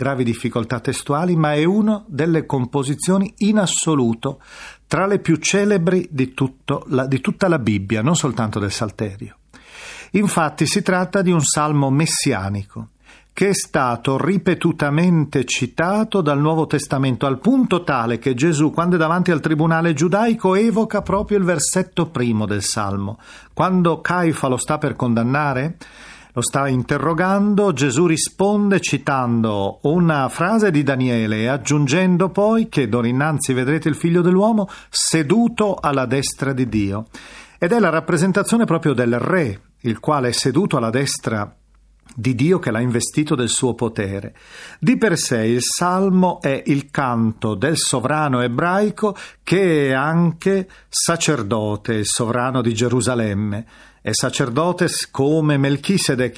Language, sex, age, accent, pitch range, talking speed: Italian, male, 40-59, native, 125-175 Hz, 140 wpm